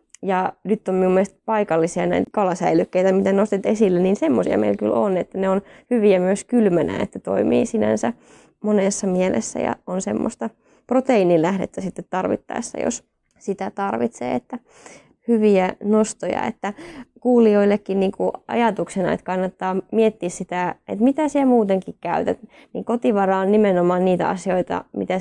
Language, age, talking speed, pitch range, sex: Finnish, 20-39, 145 wpm, 185-230 Hz, female